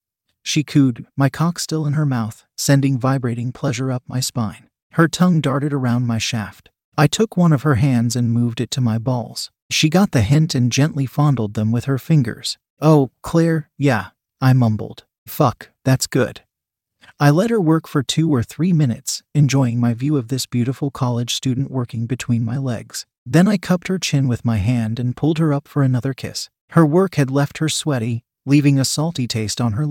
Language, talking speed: English, 200 wpm